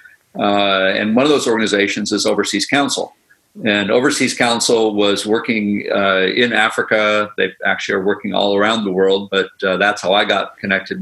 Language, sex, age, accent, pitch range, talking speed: English, male, 50-69, American, 95-110 Hz, 175 wpm